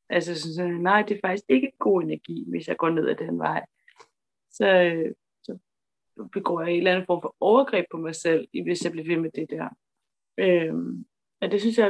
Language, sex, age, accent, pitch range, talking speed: Danish, female, 30-49, native, 170-200 Hz, 215 wpm